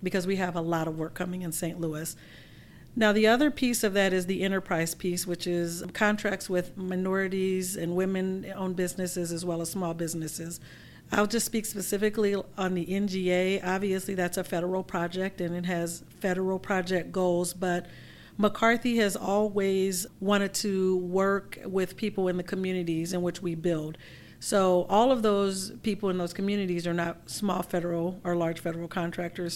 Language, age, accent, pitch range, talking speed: English, 40-59, American, 170-195 Hz, 170 wpm